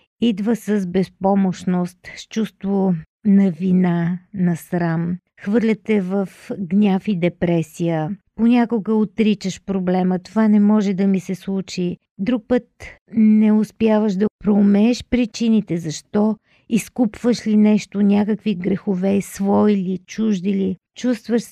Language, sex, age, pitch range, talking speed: Bulgarian, female, 50-69, 185-215 Hz, 115 wpm